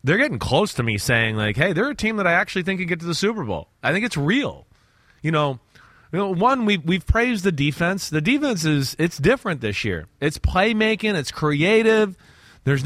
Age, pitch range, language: 30-49, 145-215 Hz, English